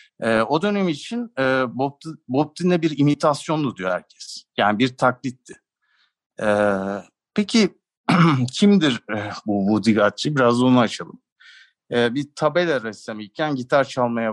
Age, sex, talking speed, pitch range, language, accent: 50-69, male, 125 wpm, 115-145 Hz, Turkish, native